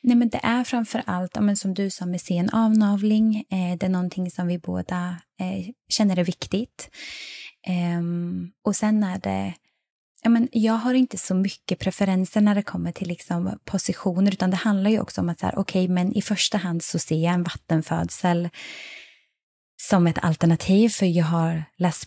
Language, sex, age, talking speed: Swedish, female, 20-39, 160 wpm